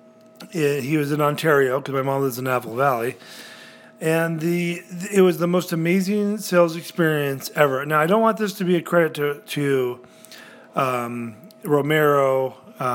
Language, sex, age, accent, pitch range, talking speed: English, male, 40-59, American, 140-175 Hz, 155 wpm